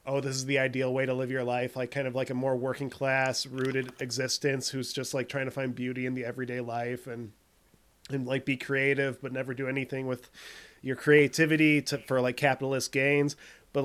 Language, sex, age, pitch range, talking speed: English, male, 30-49, 120-140 Hz, 210 wpm